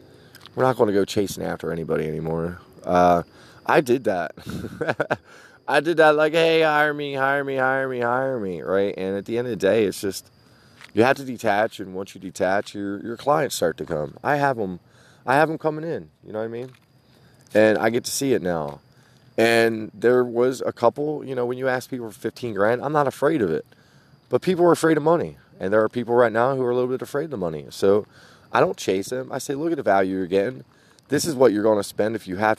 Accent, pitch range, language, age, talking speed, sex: American, 105-140 Hz, English, 20-39, 245 wpm, male